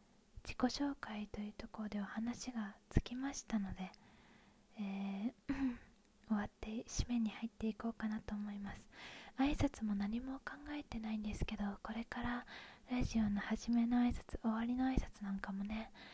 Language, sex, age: Japanese, female, 20-39